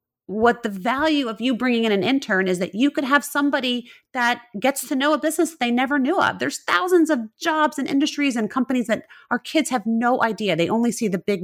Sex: female